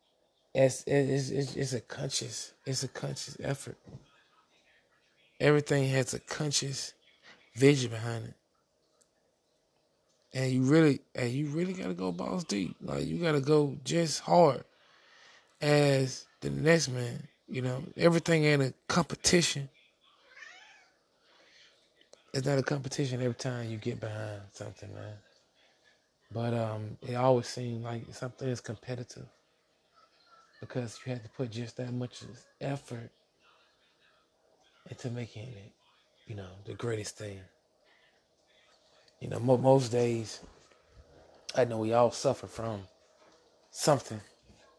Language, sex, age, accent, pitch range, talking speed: English, male, 20-39, American, 110-135 Hz, 120 wpm